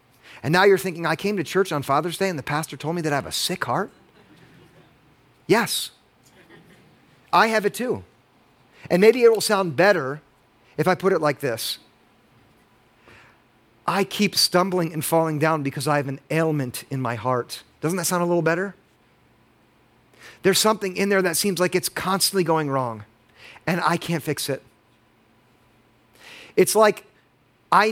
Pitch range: 135-210 Hz